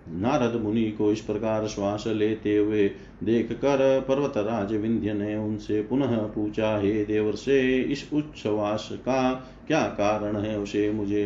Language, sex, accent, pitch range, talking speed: Hindi, male, native, 115-140 Hz, 145 wpm